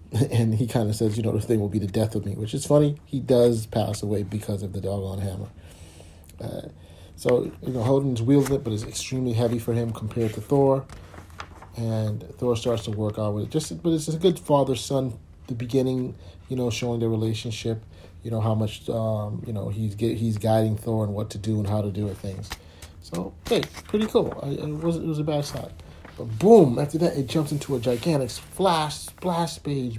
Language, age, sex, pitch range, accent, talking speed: English, 40-59, male, 105-135 Hz, American, 225 wpm